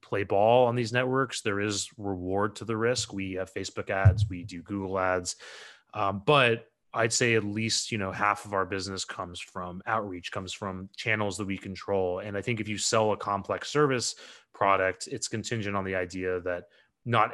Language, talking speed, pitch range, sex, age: English, 195 wpm, 95-110 Hz, male, 30-49